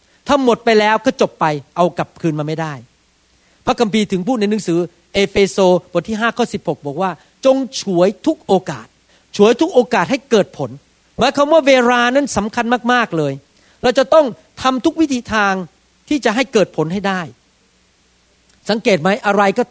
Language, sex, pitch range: Thai, male, 175-245 Hz